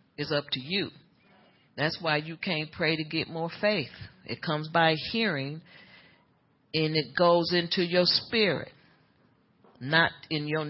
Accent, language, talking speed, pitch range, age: American, English, 145 wpm, 130-170 Hz, 40-59